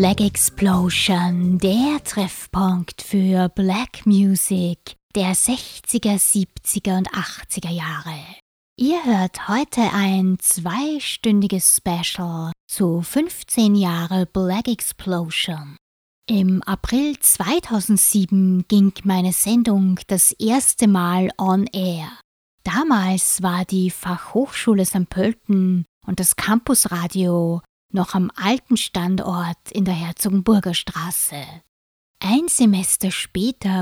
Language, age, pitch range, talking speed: German, 20-39, 180-210 Hz, 95 wpm